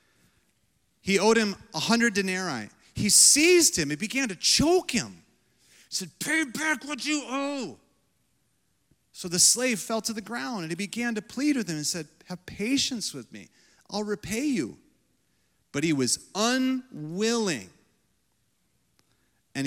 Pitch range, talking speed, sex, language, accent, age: 145-220 Hz, 145 wpm, male, English, American, 40-59